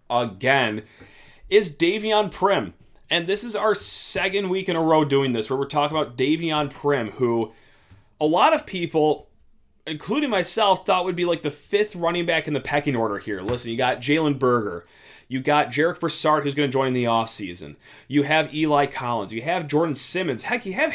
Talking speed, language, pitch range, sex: 195 wpm, English, 130-190 Hz, male